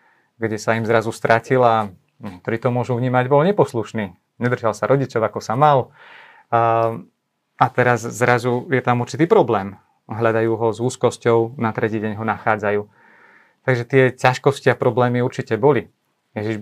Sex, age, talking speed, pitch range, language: male, 30-49, 150 wpm, 115-130 Hz, Slovak